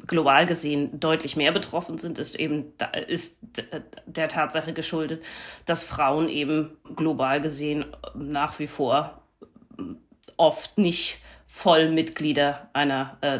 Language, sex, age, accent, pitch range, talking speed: German, female, 30-49, German, 145-165 Hz, 120 wpm